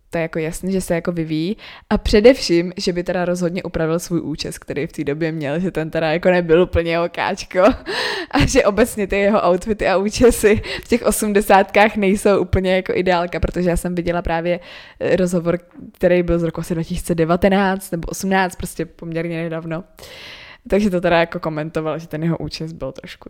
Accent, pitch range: native, 165-200 Hz